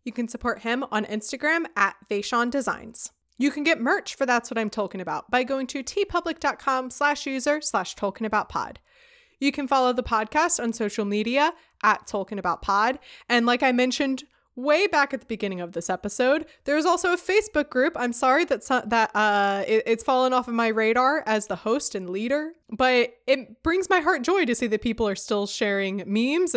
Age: 20-39